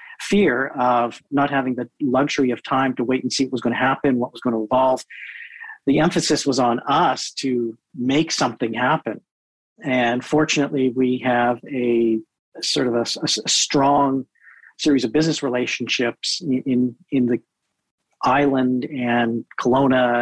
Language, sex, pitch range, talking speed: English, male, 120-145 Hz, 155 wpm